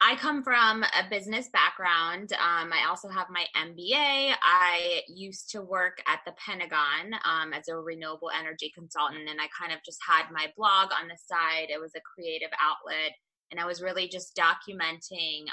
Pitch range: 160-190 Hz